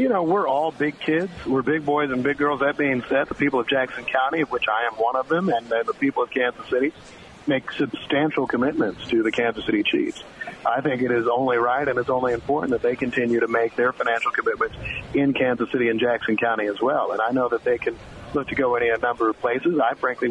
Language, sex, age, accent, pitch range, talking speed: English, male, 40-59, American, 130-165 Hz, 245 wpm